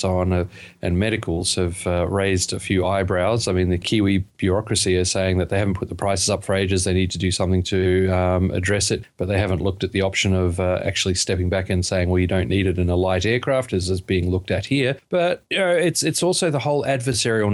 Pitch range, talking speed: 95-120 Hz, 250 wpm